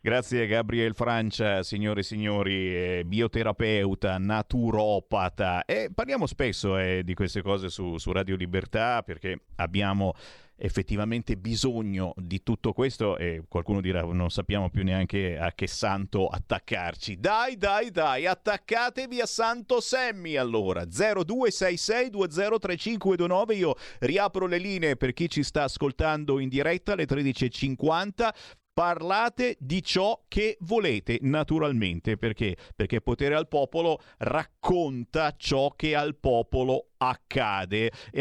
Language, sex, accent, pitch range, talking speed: Italian, male, native, 105-170 Hz, 120 wpm